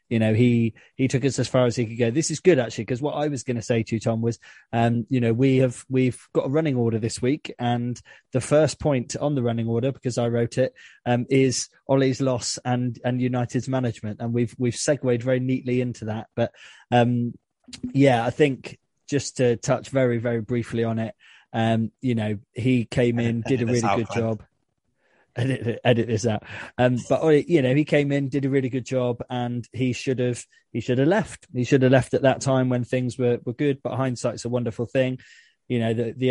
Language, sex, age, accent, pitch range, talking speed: English, male, 20-39, British, 115-130 Hz, 225 wpm